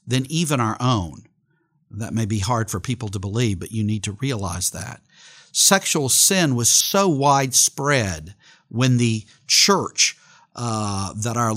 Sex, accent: male, American